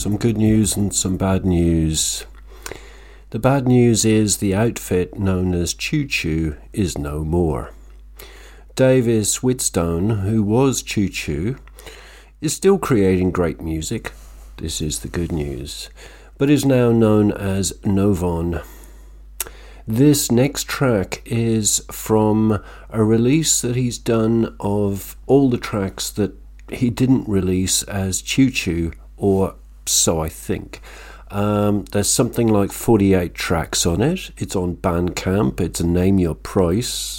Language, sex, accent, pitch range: English, male, British, 85-115 Hz